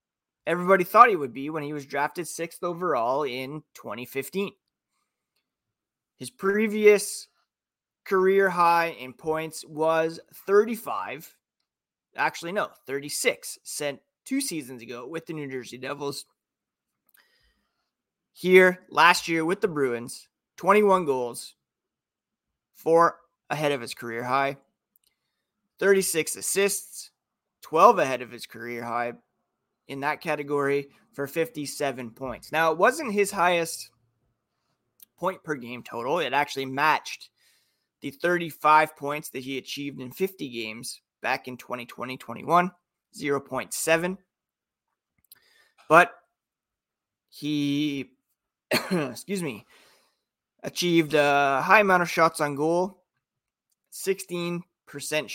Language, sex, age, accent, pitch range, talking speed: English, male, 30-49, American, 130-180 Hz, 105 wpm